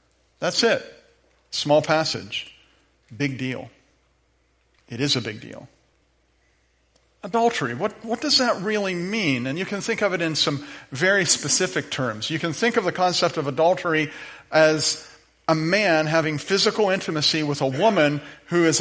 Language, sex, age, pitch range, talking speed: English, male, 50-69, 130-175 Hz, 155 wpm